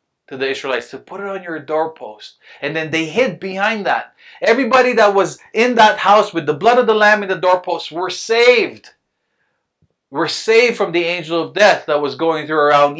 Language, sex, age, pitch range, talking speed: English, male, 30-49, 145-205 Hz, 205 wpm